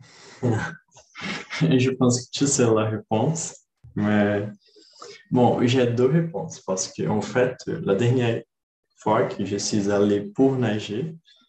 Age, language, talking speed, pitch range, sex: 20-39, Portuguese, 130 wpm, 100-130 Hz, male